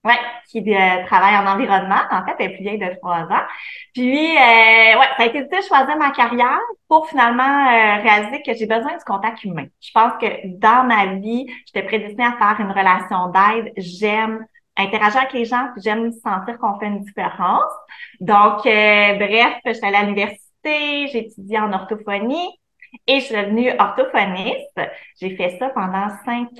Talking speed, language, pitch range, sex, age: 185 wpm, French, 195-245 Hz, female, 30-49